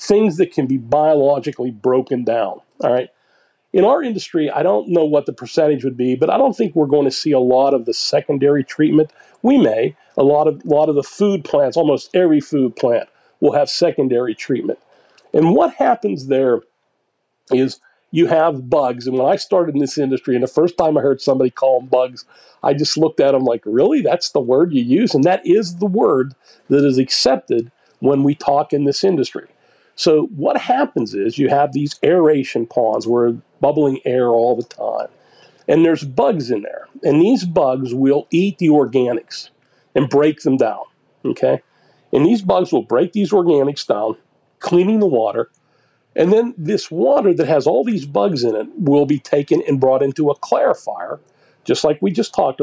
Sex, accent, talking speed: male, American, 195 wpm